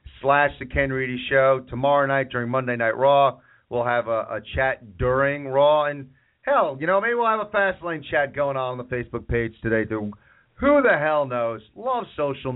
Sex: male